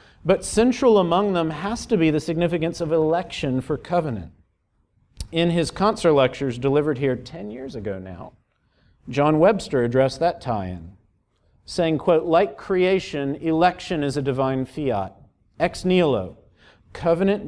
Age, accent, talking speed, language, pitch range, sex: 40-59, American, 135 wpm, English, 130-175 Hz, male